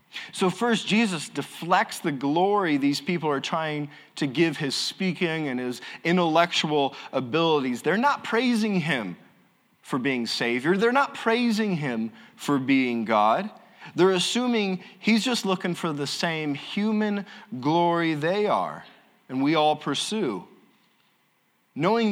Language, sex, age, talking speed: English, male, 30-49, 135 wpm